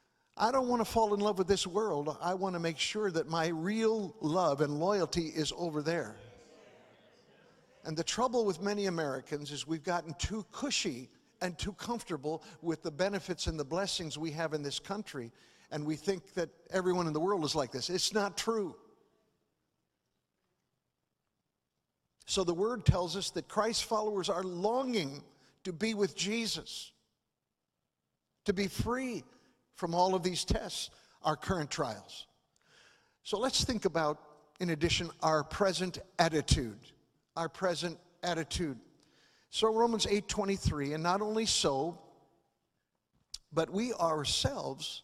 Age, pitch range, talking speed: 60-79, 155-205 Hz, 145 wpm